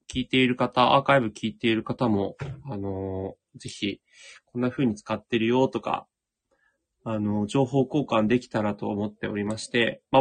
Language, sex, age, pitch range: Japanese, male, 20-39, 105-140 Hz